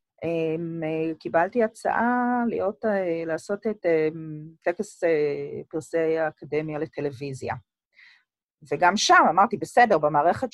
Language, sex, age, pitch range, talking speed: Hebrew, female, 30-49, 155-245 Hz, 100 wpm